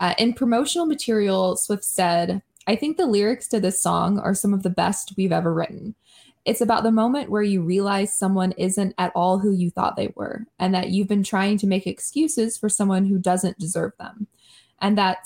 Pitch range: 180-220 Hz